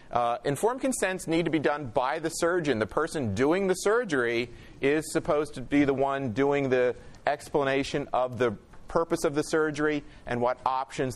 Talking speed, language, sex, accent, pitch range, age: 175 wpm, English, male, American, 120-145 Hz, 40-59